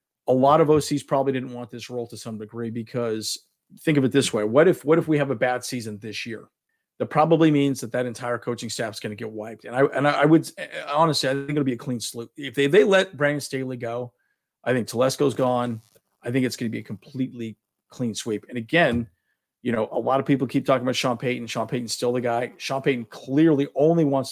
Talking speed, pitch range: 250 wpm, 120-145 Hz